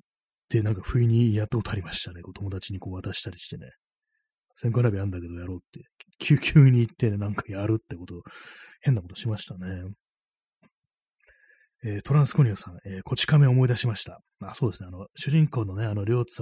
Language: Japanese